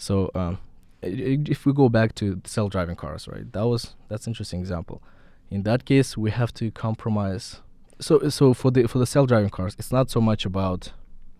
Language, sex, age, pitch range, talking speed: English, male, 20-39, 90-115 Hz, 190 wpm